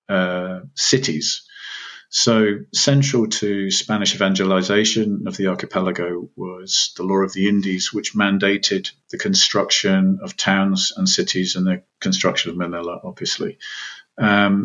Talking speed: 125 wpm